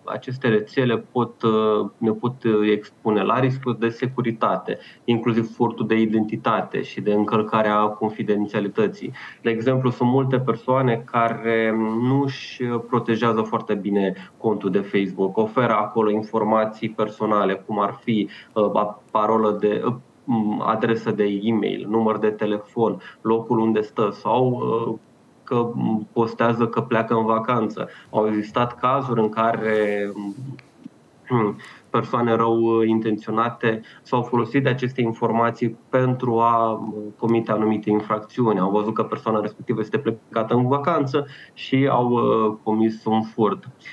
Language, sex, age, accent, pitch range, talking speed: Romanian, male, 20-39, native, 110-125 Hz, 125 wpm